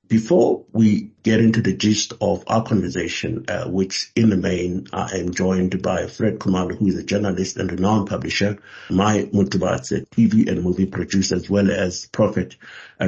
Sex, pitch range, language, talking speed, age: male, 90-105 Hz, English, 180 wpm, 60-79